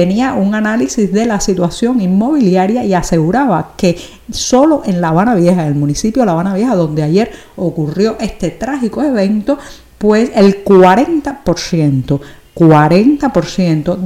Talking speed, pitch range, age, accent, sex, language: 130 wpm, 180-245 Hz, 50-69, American, female, Spanish